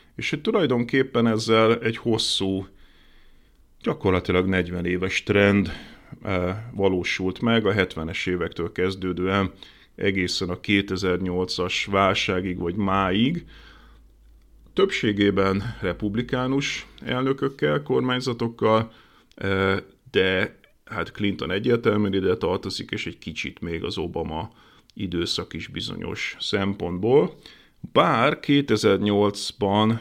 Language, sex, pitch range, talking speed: Hungarian, male, 95-105 Hz, 90 wpm